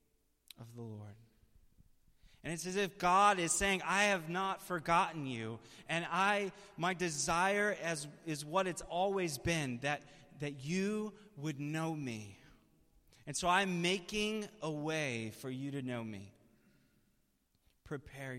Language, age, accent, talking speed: English, 30-49, American, 140 wpm